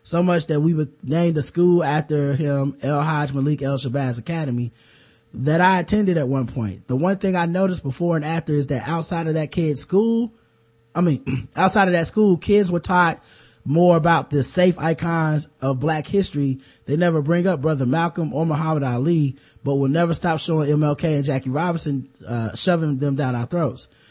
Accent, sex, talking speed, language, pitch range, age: American, male, 190 wpm, English, 130-165 Hz, 20-39